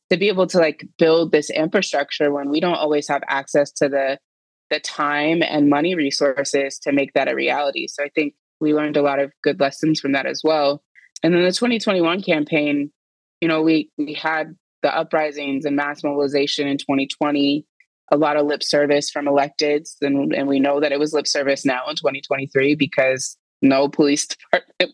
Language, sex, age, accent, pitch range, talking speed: English, female, 20-39, American, 140-155 Hz, 195 wpm